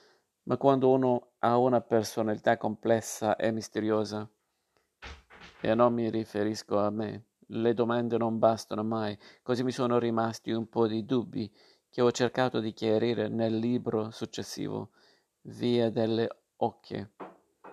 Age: 50-69